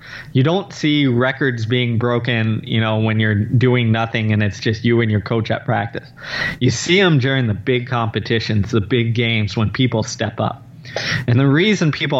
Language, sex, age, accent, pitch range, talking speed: English, male, 20-39, American, 110-130 Hz, 205 wpm